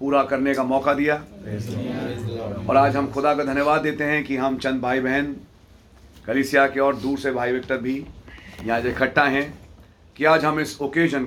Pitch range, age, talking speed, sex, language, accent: 100-140 Hz, 40-59, 180 wpm, male, English, Indian